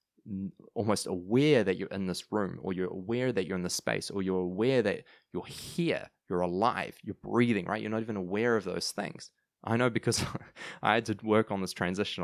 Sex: male